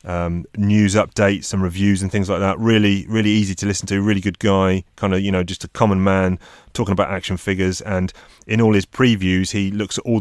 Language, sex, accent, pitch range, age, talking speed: English, male, British, 95-105 Hz, 30-49, 230 wpm